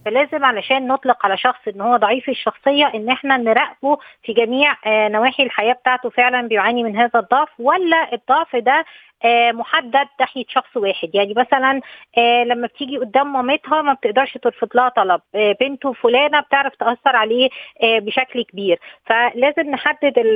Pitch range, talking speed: 230-275 Hz, 145 wpm